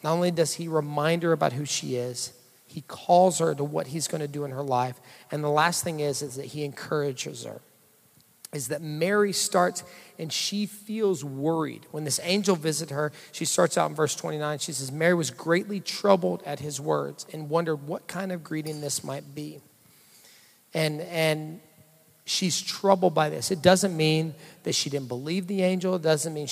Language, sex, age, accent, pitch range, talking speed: English, male, 40-59, American, 150-180 Hz, 195 wpm